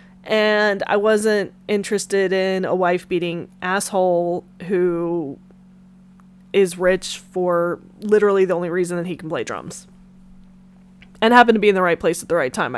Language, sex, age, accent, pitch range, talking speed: English, female, 20-39, American, 185-215 Hz, 160 wpm